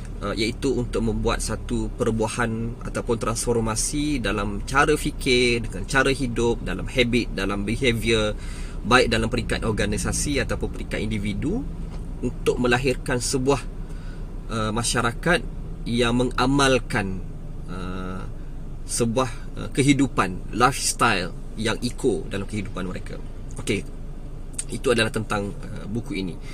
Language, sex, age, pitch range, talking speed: Malay, male, 20-39, 100-125 Hz, 110 wpm